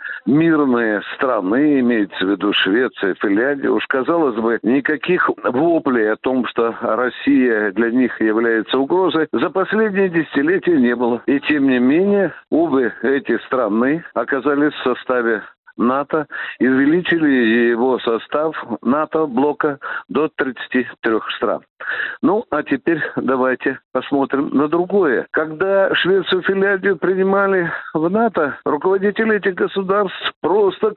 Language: Russian